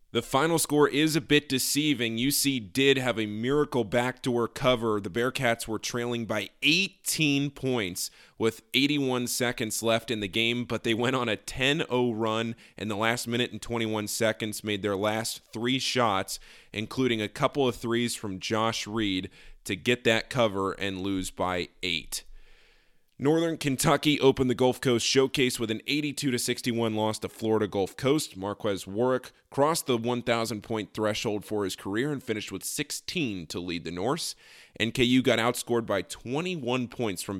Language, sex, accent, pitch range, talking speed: English, male, American, 105-130 Hz, 165 wpm